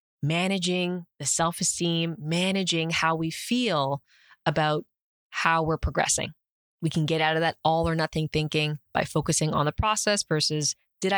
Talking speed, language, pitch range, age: 150 wpm, English, 155-195 Hz, 20-39